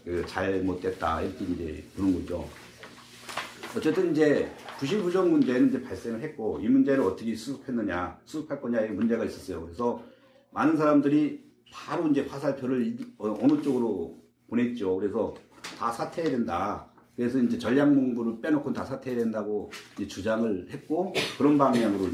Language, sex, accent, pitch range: Korean, male, native, 110-150 Hz